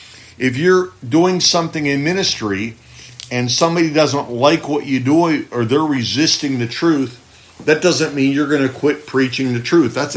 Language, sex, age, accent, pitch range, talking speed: English, male, 60-79, American, 115-150 Hz, 175 wpm